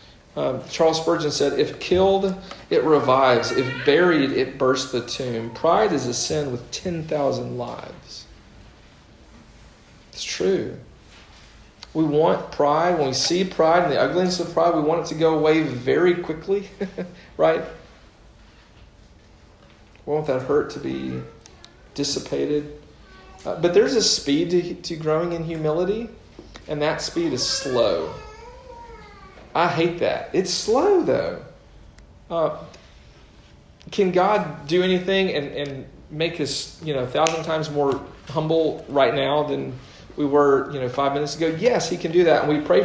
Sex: male